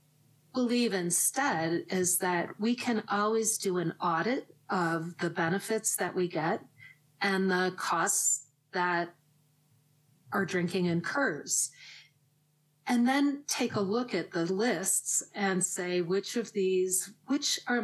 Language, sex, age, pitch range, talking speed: English, female, 40-59, 160-205 Hz, 130 wpm